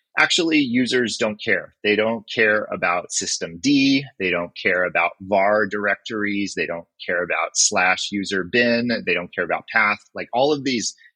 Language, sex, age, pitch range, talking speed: English, male, 30-49, 100-135 Hz, 170 wpm